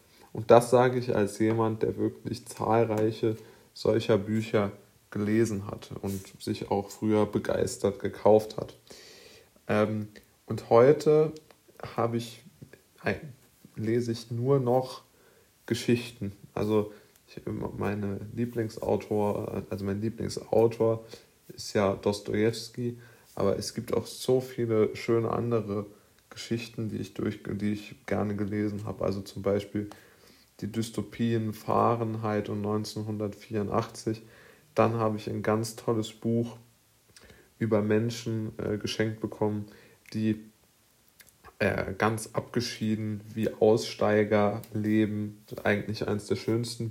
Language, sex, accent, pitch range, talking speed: German, male, German, 105-115 Hz, 115 wpm